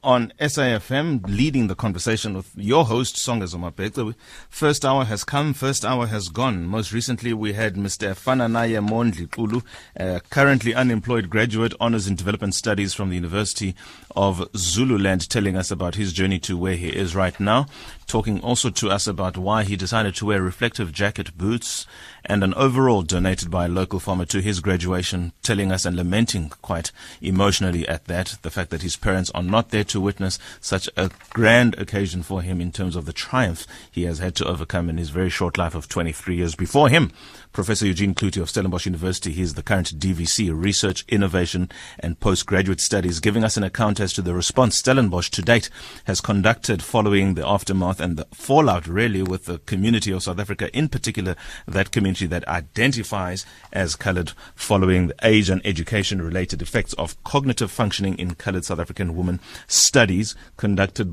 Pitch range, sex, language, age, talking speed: 90-110 Hz, male, English, 30-49, 180 wpm